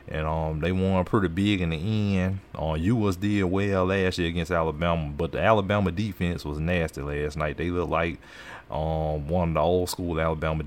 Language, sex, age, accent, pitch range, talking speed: English, male, 30-49, American, 80-95 Hz, 190 wpm